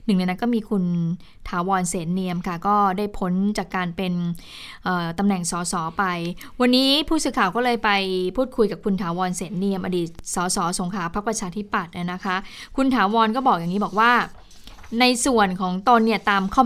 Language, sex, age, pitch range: Thai, female, 20-39, 185-235 Hz